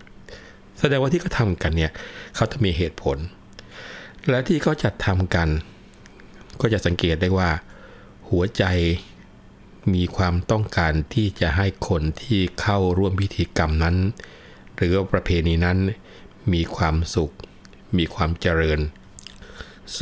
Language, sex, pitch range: Thai, male, 80-100 Hz